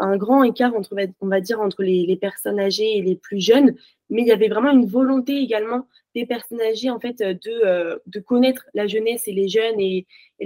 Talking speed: 230 wpm